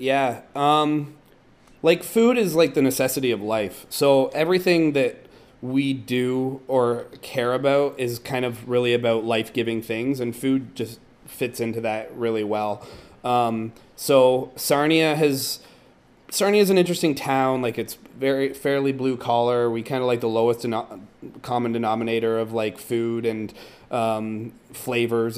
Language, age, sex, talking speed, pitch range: English, 30-49, male, 145 wpm, 115-135 Hz